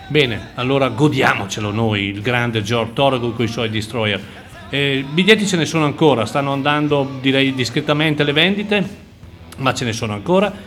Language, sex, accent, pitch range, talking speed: Italian, male, native, 115-150 Hz, 170 wpm